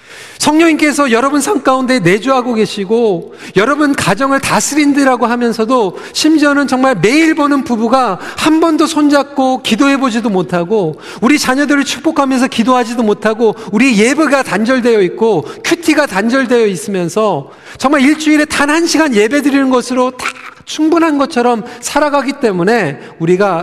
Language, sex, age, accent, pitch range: Korean, male, 40-59, native, 215-285 Hz